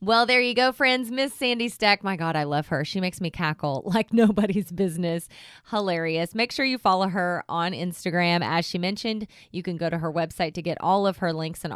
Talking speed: 225 wpm